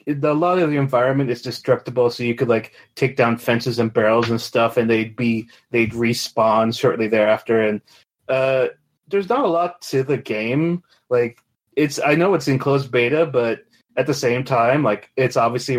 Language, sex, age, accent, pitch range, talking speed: English, male, 30-49, American, 115-130 Hz, 190 wpm